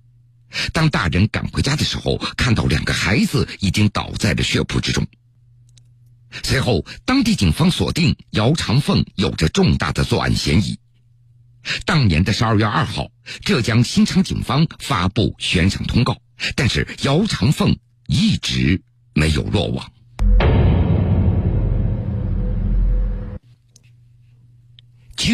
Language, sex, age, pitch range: Chinese, male, 50-69, 105-135 Hz